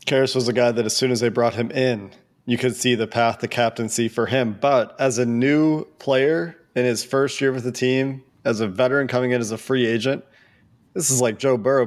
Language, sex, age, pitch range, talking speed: English, male, 20-39, 115-130 Hz, 240 wpm